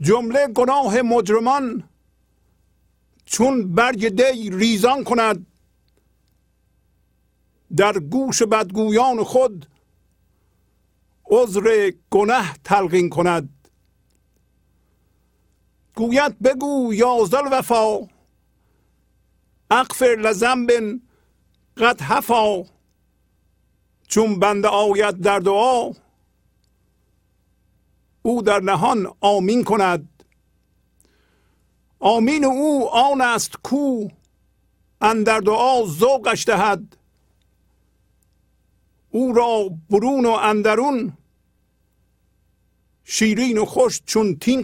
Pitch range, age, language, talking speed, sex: 150-240 Hz, 50-69, Persian, 75 wpm, male